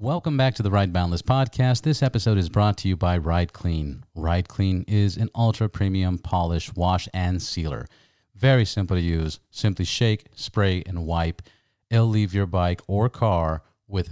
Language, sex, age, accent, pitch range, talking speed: English, male, 40-59, American, 90-110 Hz, 175 wpm